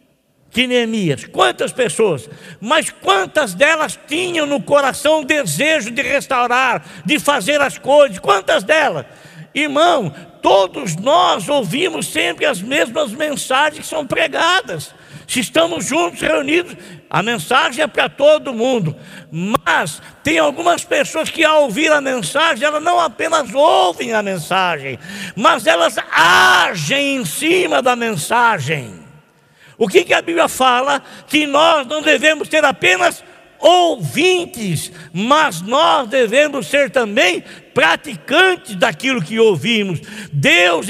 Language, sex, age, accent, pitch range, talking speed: Portuguese, male, 60-79, Brazilian, 245-310 Hz, 120 wpm